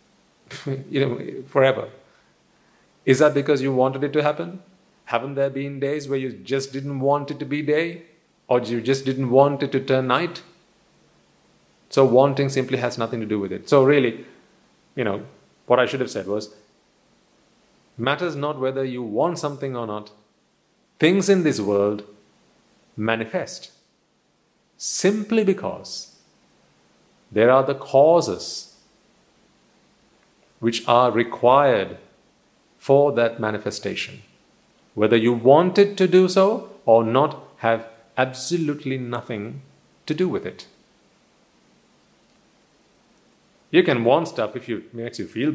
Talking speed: 135 wpm